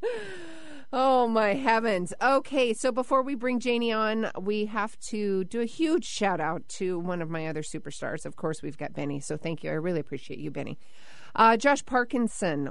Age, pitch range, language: 40-59, 155-210 Hz, English